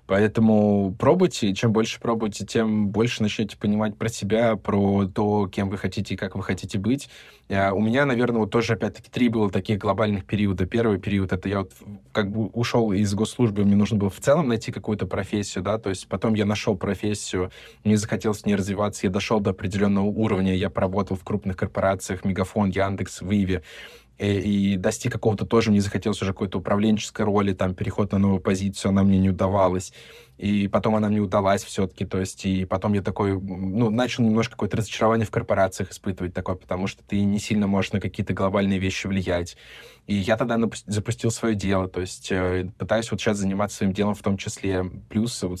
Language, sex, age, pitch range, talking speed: Russian, male, 20-39, 95-110 Hz, 195 wpm